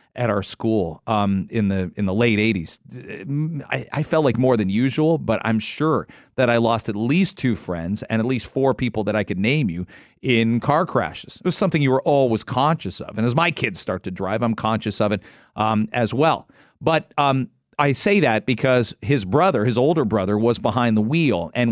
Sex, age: male, 40-59